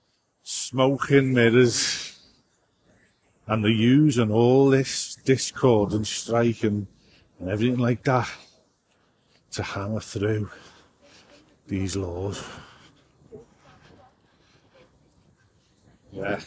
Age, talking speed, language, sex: 50-69, 75 wpm, English, male